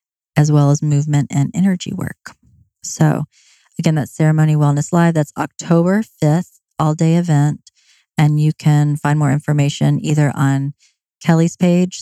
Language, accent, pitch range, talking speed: English, American, 145-165 Hz, 145 wpm